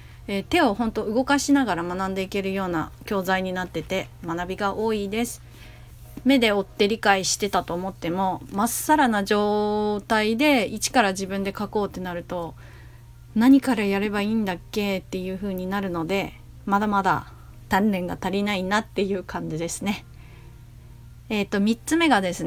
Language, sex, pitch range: Japanese, female, 180-220 Hz